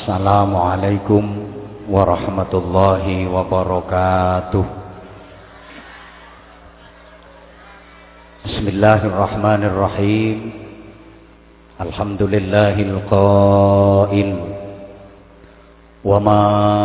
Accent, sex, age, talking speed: Indonesian, male, 50-69, 45 wpm